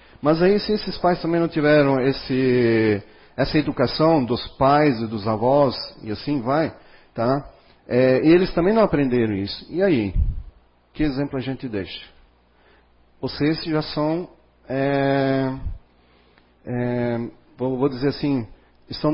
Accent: Brazilian